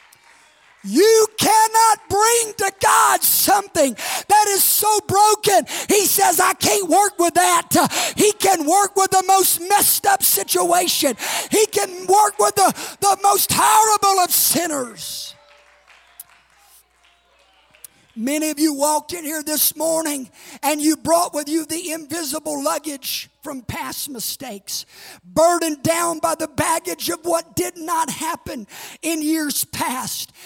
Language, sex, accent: English, male, American